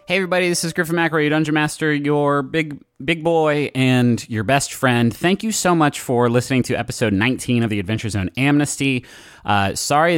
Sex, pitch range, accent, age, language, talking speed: male, 95-145 Hz, American, 30-49, English, 195 wpm